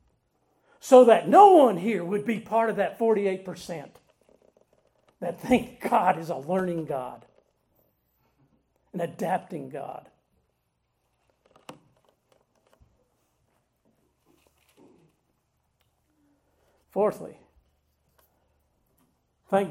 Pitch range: 165-225 Hz